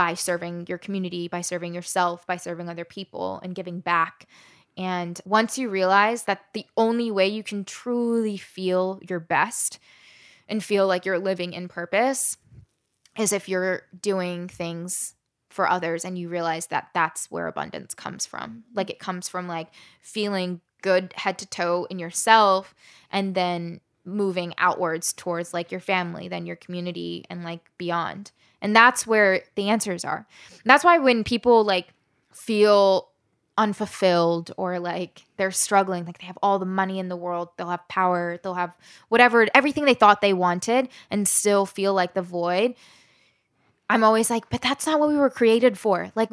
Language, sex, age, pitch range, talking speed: English, female, 10-29, 175-215 Hz, 170 wpm